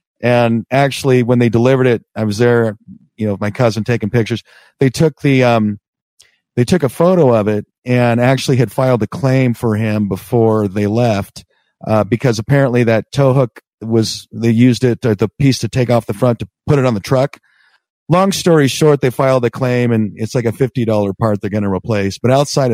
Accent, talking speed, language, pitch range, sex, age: American, 210 wpm, English, 115-135 Hz, male, 40-59